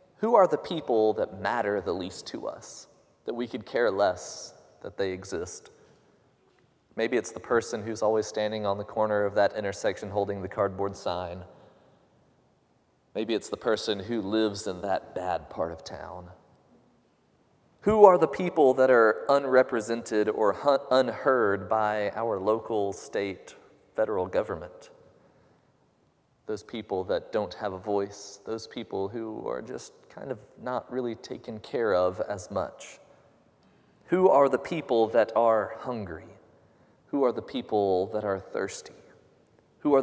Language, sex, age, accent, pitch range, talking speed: English, male, 30-49, American, 100-140 Hz, 150 wpm